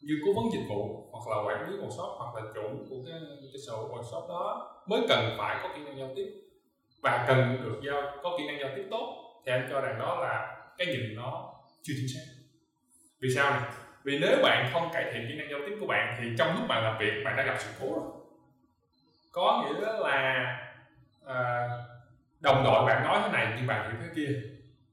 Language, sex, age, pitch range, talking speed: Vietnamese, male, 20-39, 115-170 Hz, 220 wpm